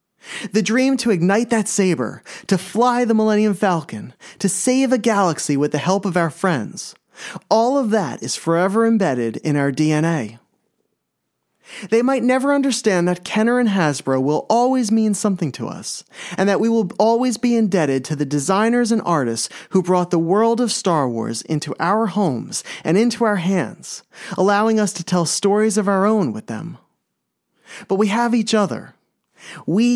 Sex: male